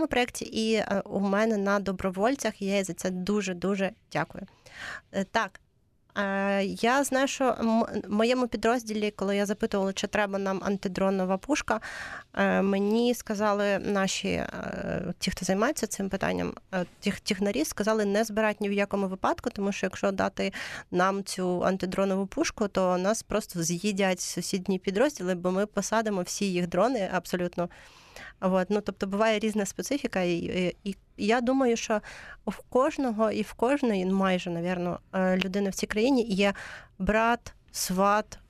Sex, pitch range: female, 185-220 Hz